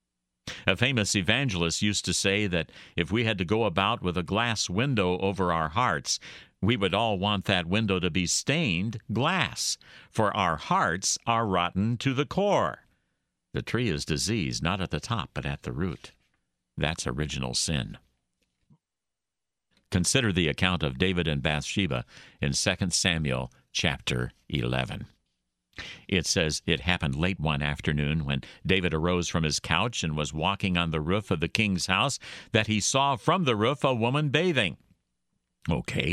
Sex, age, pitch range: male, 60-79, 80-110 Hz